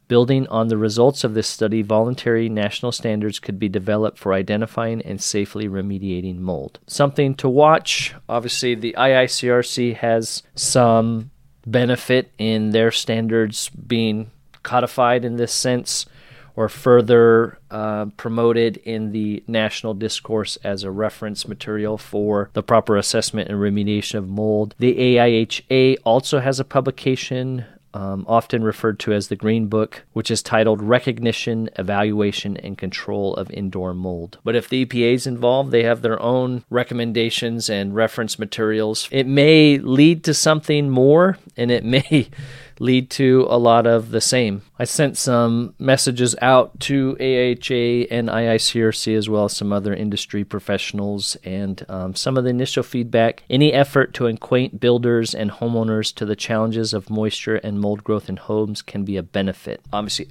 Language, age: English, 40-59